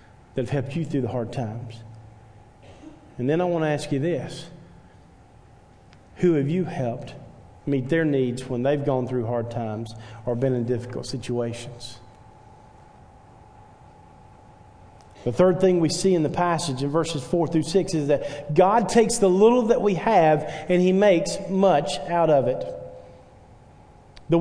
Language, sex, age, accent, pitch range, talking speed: English, male, 40-59, American, 120-200 Hz, 155 wpm